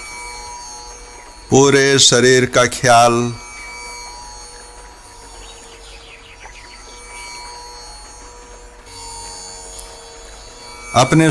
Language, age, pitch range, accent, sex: Hindi, 50-69, 110-125 Hz, native, male